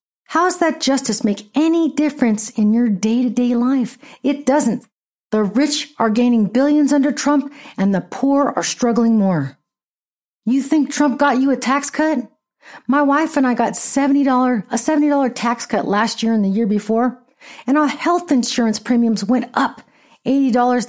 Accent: American